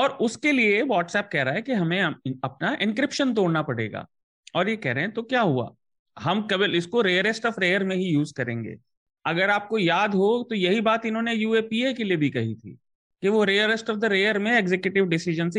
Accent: native